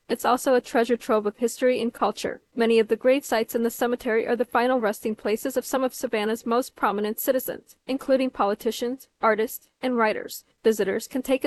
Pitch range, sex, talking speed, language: 225-260 Hz, female, 195 wpm, English